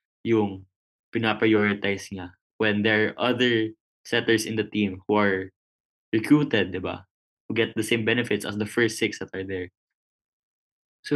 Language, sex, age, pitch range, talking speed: Filipino, male, 20-39, 105-125 Hz, 155 wpm